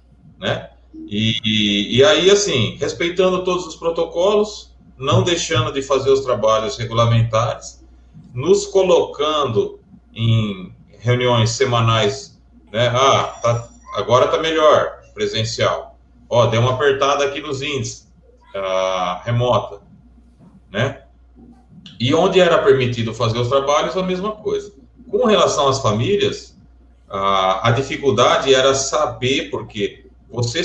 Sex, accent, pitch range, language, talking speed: male, Brazilian, 110-160 Hz, Portuguese, 120 wpm